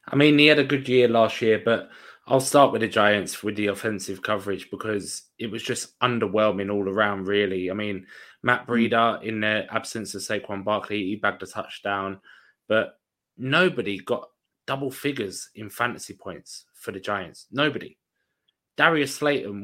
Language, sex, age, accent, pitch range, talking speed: English, male, 20-39, British, 100-120 Hz, 170 wpm